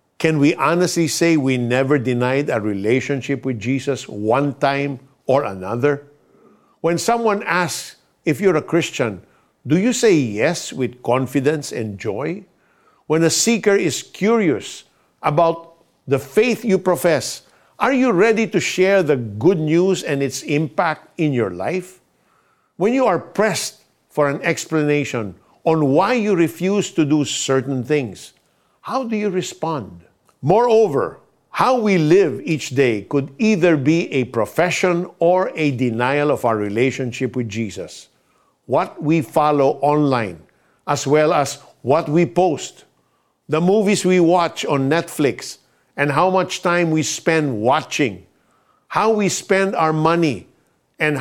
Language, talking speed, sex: Filipino, 140 wpm, male